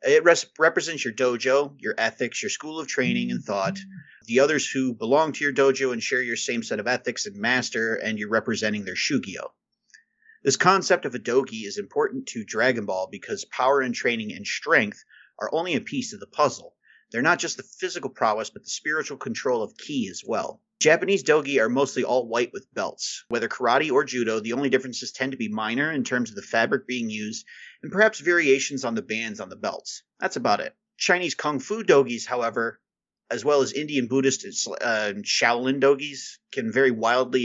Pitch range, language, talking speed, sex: 115-155 Hz, English, 200 wpm, male